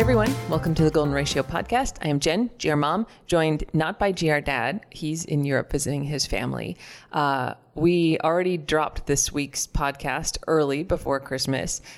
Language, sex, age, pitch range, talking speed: English, female, 30-49, 140-160 Hz, 165 wpm